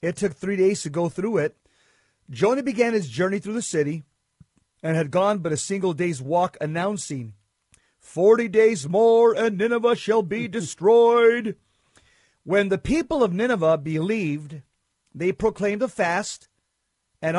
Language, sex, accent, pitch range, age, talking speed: English, male, American, 155-210 Hz, 50-69, 150 wpm